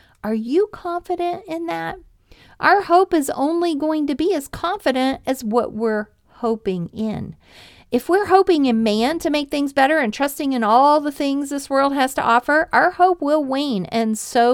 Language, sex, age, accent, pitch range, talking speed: English, female, 40-59, American, 210-300 Hz, 185 wpm